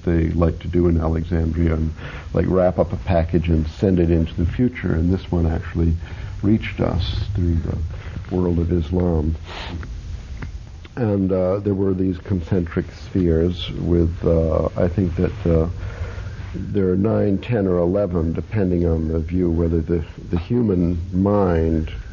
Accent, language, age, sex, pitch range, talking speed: American, English, 60-79, male, 85-100 Hz, 155 wpm